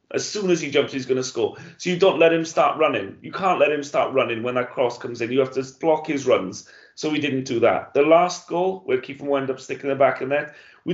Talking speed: 275 wpm